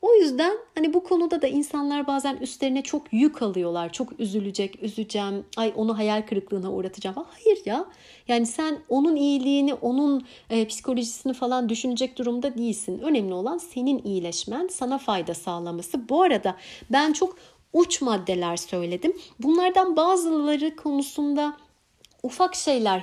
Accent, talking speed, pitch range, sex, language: native, 135 wpm, 205-300 Hz, female, Turkish